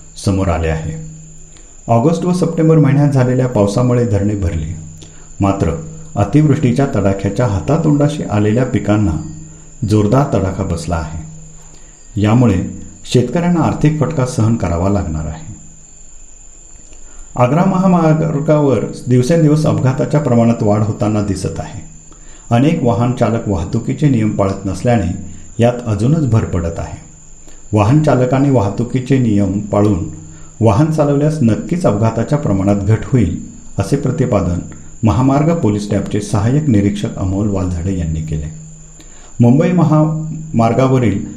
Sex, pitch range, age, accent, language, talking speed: male, 95-135 Hz, 50-69, native, Marathi, 110 wpm